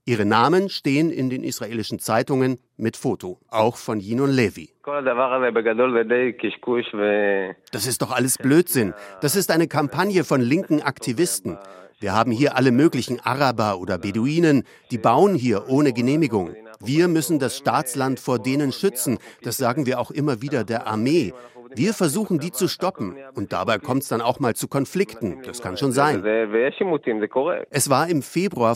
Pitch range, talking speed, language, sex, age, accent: 115-145 Hz, 160 wpm, German, male, 50-69, German